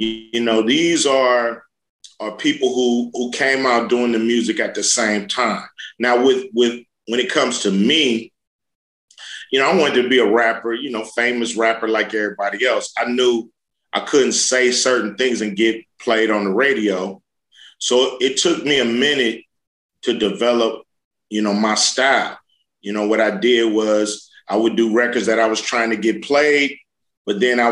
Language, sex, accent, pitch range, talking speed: English, male, American, 110-125 Hz, 185 wpm